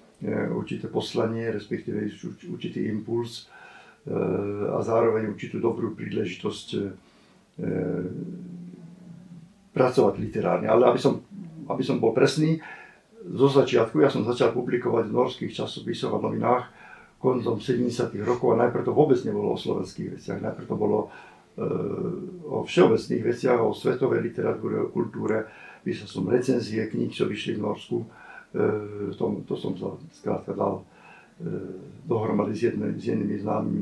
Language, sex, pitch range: Slovak, male, 110-145 Hz